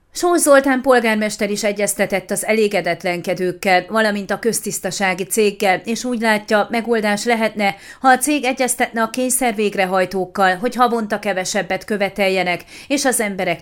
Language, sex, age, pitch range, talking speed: Hungarian, female, 30-49, 185-235 Hz, 130 wpm